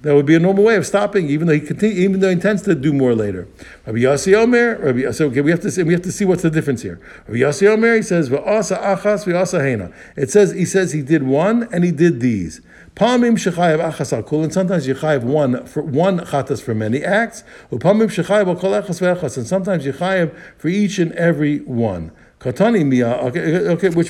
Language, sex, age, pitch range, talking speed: English, male, 60-79, 125-180 Hz, 175 wpm